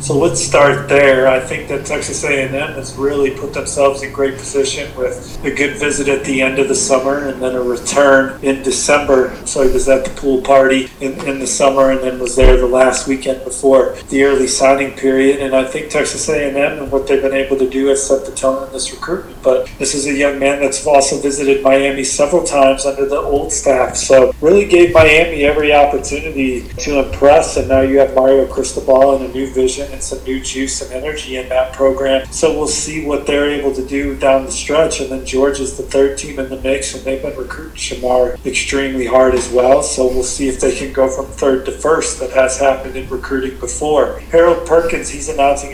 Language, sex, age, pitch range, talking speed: English, male, 40-59, 130-140 Hz, 220 wpm